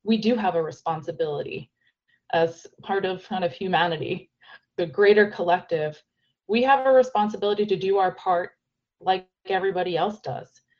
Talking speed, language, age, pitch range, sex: 145 wpm, English, 30-49, 175-210 Hz, female